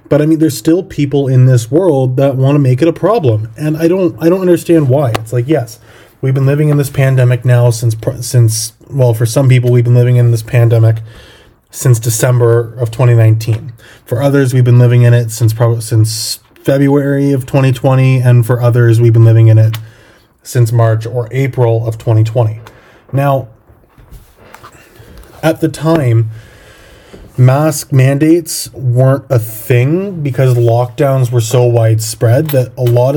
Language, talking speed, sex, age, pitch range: English, 170 wpm, male, 20-39, 115-135 Hz